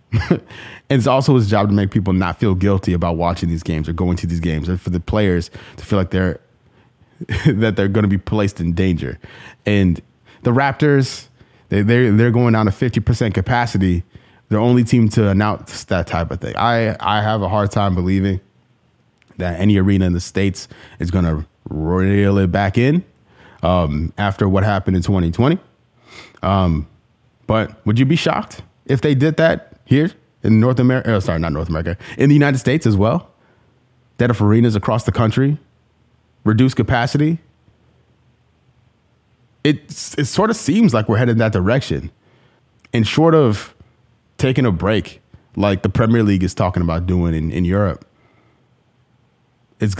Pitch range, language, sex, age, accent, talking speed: 95-120 Hz, English, male, 20-39, American, 170 wpm